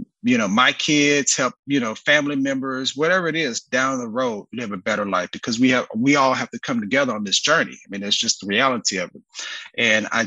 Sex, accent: male, American